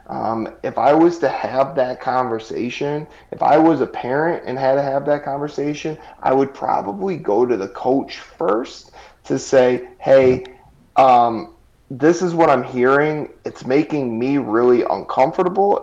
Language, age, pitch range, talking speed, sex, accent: English, 30-49, 120-145 Hz, 155 wpm, male, American